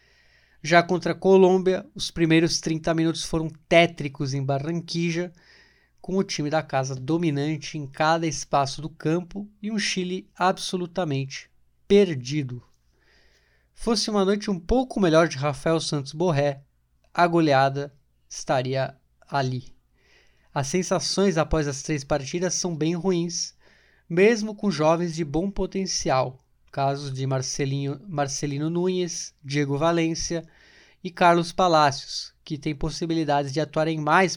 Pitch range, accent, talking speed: 140-175 Hz, Brazilian, 125 wpm